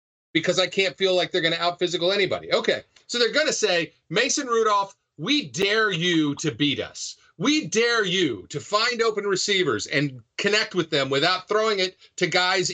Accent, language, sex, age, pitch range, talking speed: American, English, male, 40-59, 140-205 Hz, 190 wpm